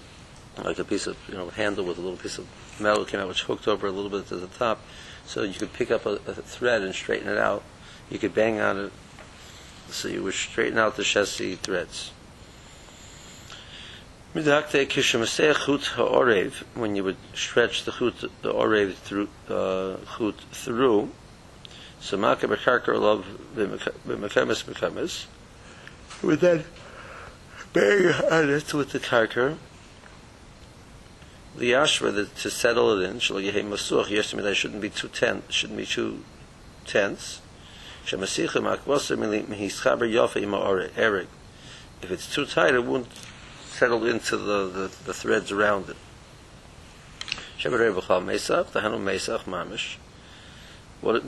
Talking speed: 145 wpm